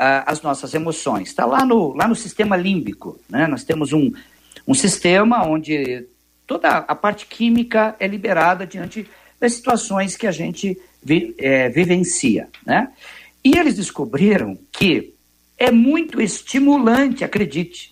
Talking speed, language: 135 wpm, Portuguese